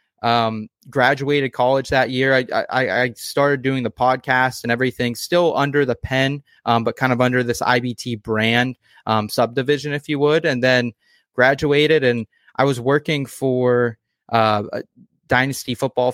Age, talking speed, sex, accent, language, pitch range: 20-39, 155 wpm, male, American, English, 115-130 Hz